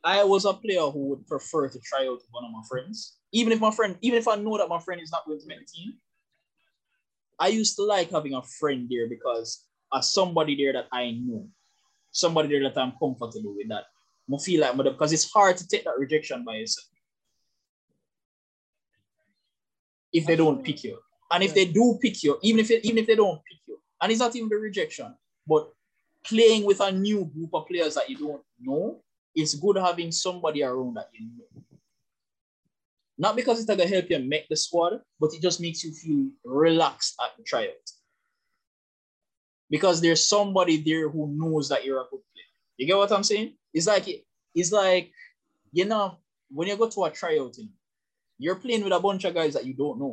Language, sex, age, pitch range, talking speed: English, male, 20-39, 150-220 Hz, 205 wpm